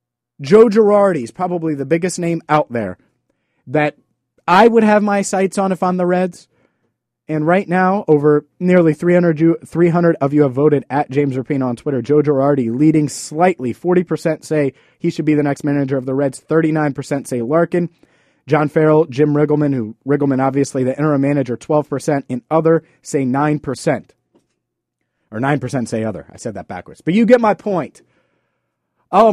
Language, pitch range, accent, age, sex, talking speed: English, 145-195 Hz, American, 30-49, male, 170 wpm